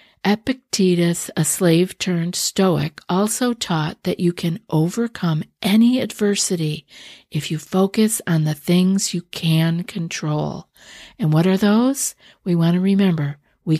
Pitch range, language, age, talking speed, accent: 160-195 Hz, English, 50-69, 125 wpm, American